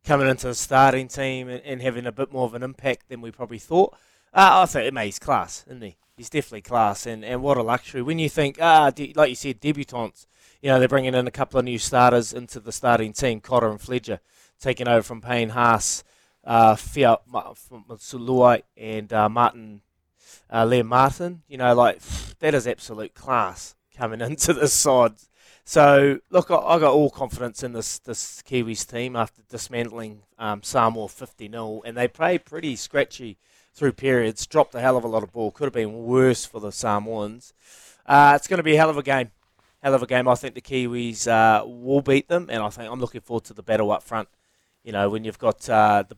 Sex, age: male, 20-39